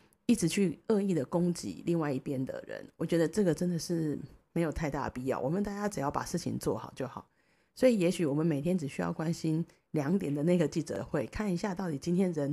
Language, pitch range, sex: Chinese, 145-190 Hz, female